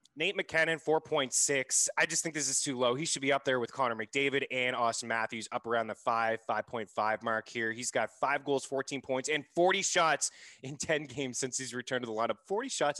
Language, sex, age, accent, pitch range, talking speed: English, male, 20-39, American, 110-145 Hz, 220 wpm